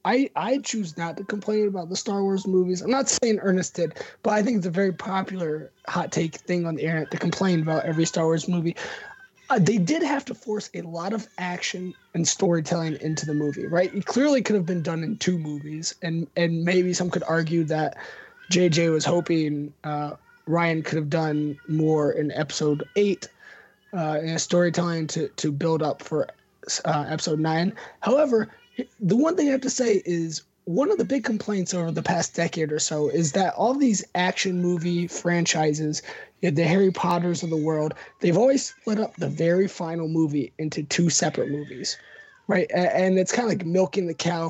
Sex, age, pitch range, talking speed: male, 20-39, 160-205 Hz, 195 wpm